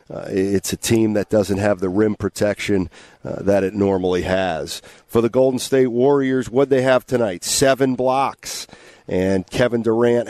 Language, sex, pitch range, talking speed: English, male, 100-120 Hz, 170 wpm